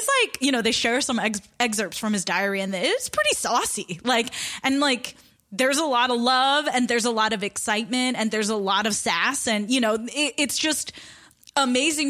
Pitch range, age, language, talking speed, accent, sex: 200-260 Hz, 10-29, English, 210 wpm, American, female